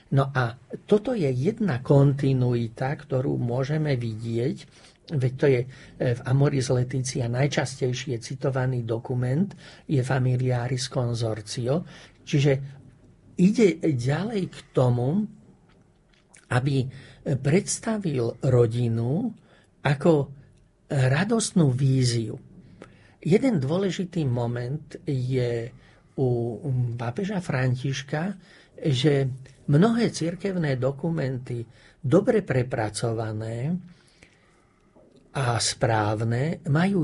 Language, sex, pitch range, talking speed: Slovak, male, 125-165 Hz, 80 wpm